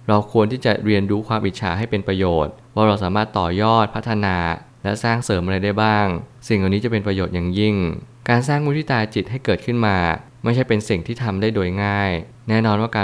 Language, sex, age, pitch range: Thai, male, 20-39, 95-115 Hz